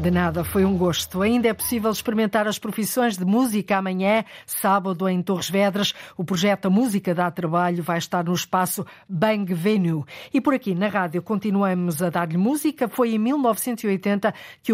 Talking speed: 175 wpm